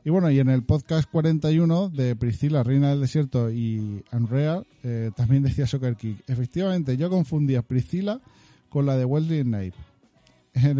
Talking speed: 160 wpm